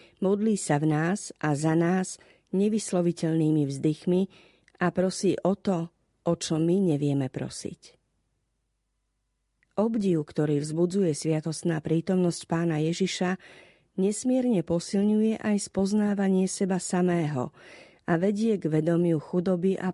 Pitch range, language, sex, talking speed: 155-190 Hz, Slovak, female, 110 wpm